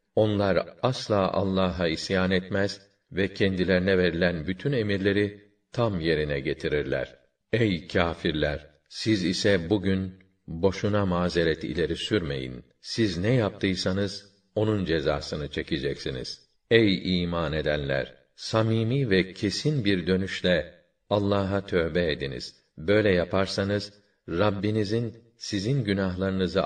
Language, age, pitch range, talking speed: Turkish, 50-69, 90-105 Hz, 100 wpm